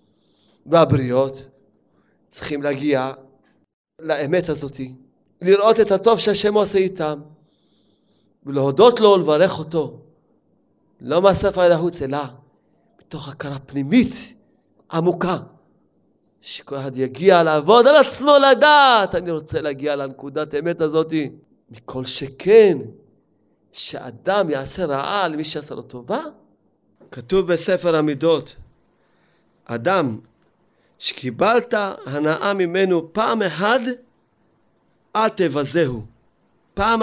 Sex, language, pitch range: male, Hebrew, 145-195 Hz